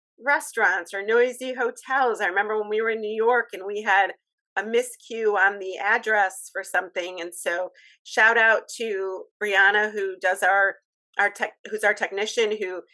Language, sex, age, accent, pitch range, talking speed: English, female, 40-59, American, 195-300 Hz, 170 wpm